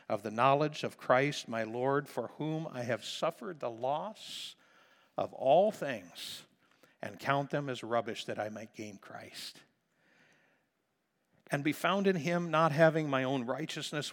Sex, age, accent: male, 60-79, American